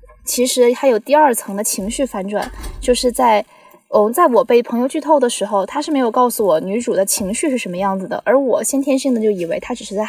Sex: female